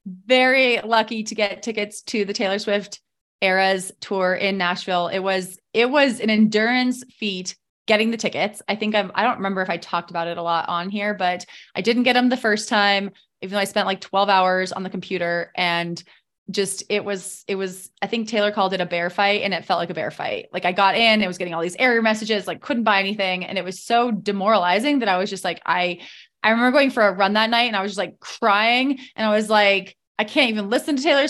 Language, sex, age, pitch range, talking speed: English, female, 20-39, 195-235 Hz, 245 wpm